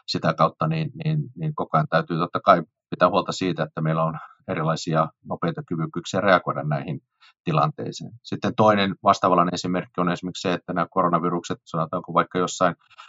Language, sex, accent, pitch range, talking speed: Finnish, male, native, 80-95 Hz, 160 wpm